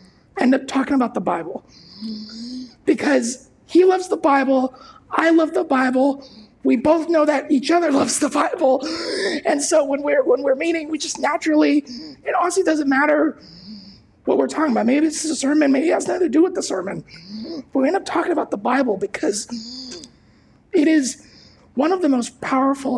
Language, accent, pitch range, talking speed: English, American, 220-300 Hz, 190 wpm